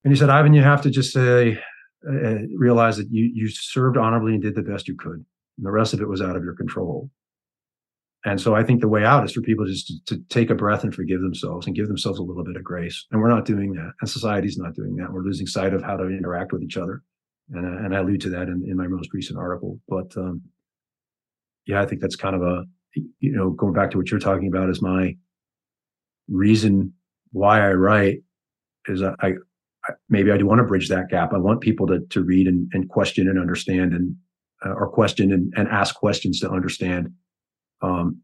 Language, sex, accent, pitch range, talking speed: English, male, American, 90-110 Hz, 235 wpm